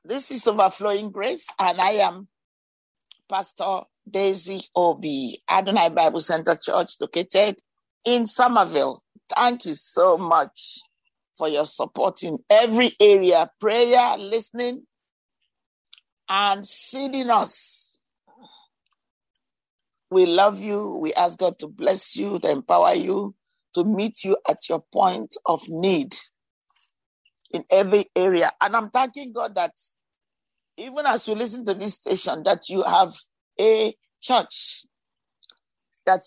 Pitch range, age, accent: 185-245 Hz, 50-69, Nigerian